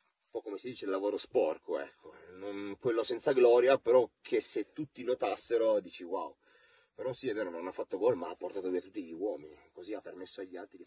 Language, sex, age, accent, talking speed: Italian, male, 30-49, native, 215 wpm